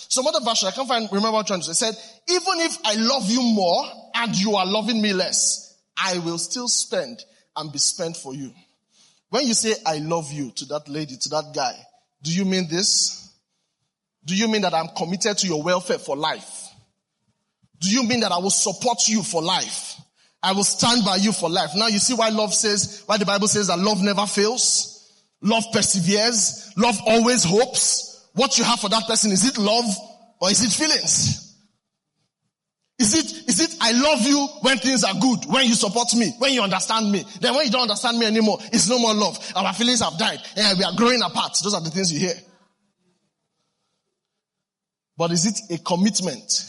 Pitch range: 175-230 Hz